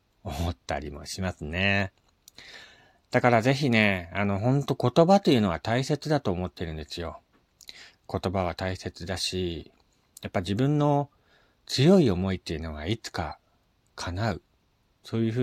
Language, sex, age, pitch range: Japanese, male, 40-59, 90-125 Hz